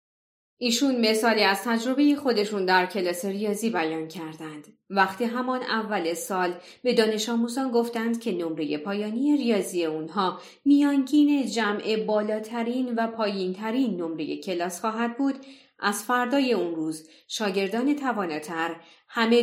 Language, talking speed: Persian, 120 wpm